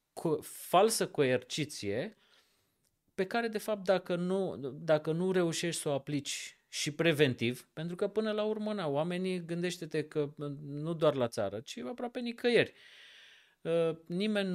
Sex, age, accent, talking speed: male, 30-49, native, 135 wpm